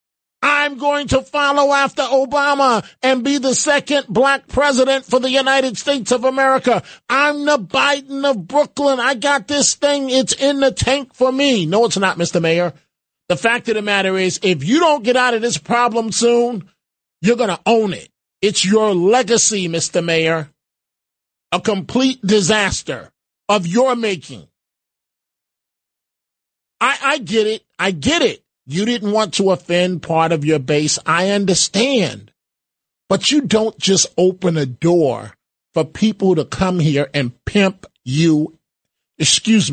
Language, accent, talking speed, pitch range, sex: English, American, 155 wpm, 165-260 Hz, male